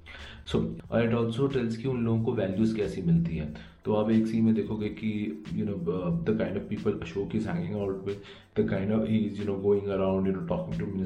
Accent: native